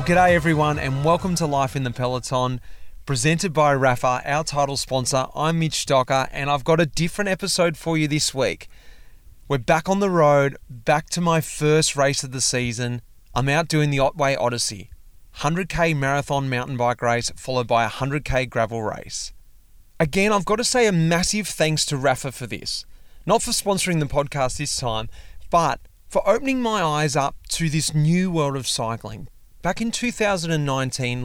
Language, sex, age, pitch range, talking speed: English, male, 30-49, 125-165 Hz, 180 wpm